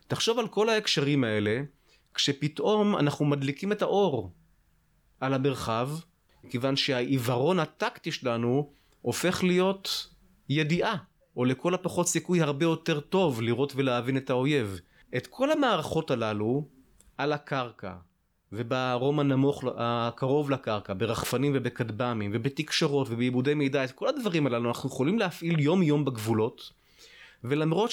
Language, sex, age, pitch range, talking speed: Hebrew, male, 30-49, 110-150 Hz, 120 wpm